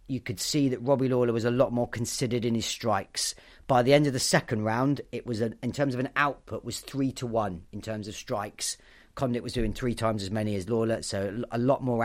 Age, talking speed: 30-49, 250 wpm